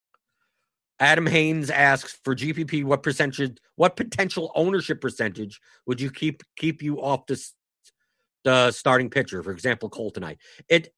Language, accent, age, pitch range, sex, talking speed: English, American, 50-69, 120-165 Hz, male, 140 wpm